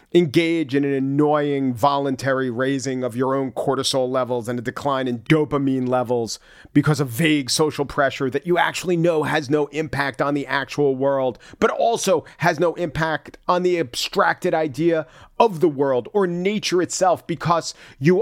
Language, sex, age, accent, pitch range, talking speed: English, male, 40-59, American, 130-165 Hz, 165 wpm